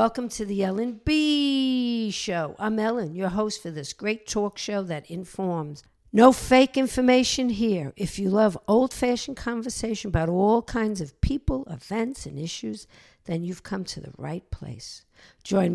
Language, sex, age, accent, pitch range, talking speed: English, female, 60-79, American, 170-220 Hz, 160 wpm